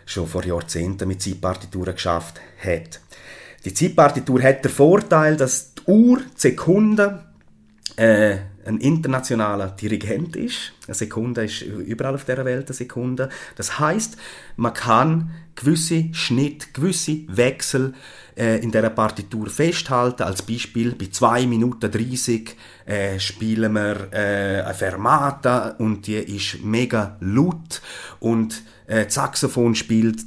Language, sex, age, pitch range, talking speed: German, male, 30-49, 105-130 Hz, 130 wpm